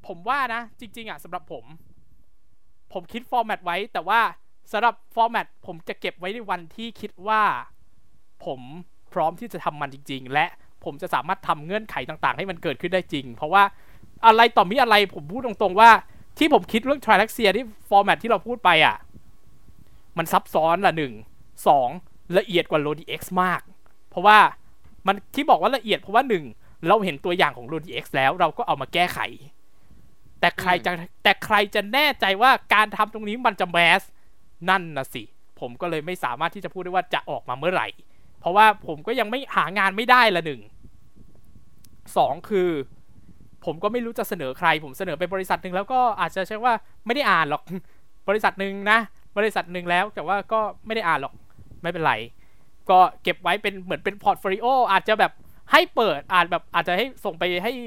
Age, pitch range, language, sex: 20-39, 165-220 Hz, Thai, male